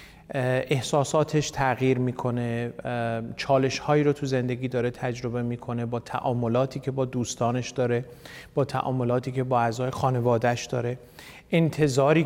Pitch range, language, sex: 120-145 Hz, Persian, male